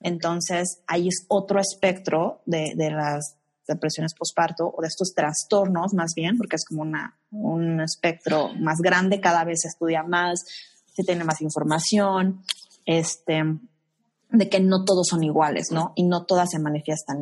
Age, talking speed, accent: 20-39, 160 wpm, Mexican